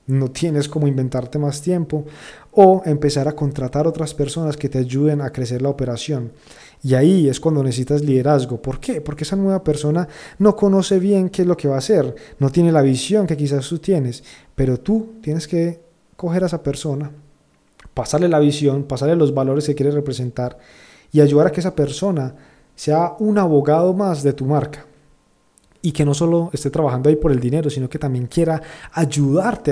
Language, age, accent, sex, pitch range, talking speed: Spanish, 30-49, Colombian, male, 140-175 Hz, 190 wpm